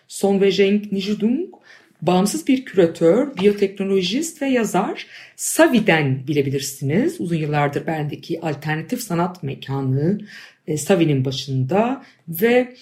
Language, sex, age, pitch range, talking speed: Turkish, female, 50-69, 155-210 Hz, 90 wpm